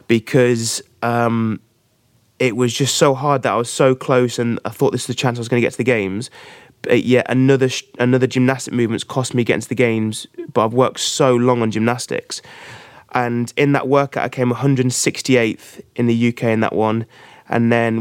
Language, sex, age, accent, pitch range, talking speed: English, male, 20-39, British, 120-130 Hz, 205 wpm